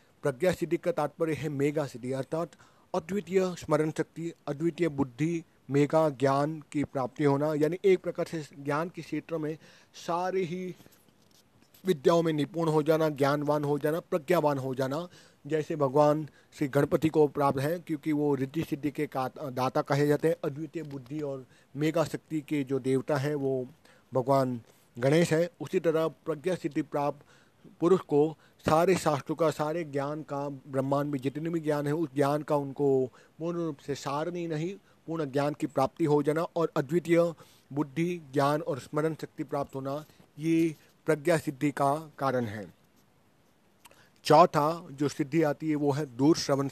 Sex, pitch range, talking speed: male, 140-165 Hz, 165 wpm